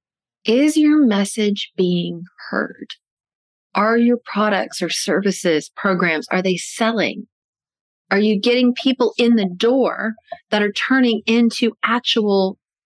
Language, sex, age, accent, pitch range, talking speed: English, female, 30-49, American, 185-245 Hz, 120 wpm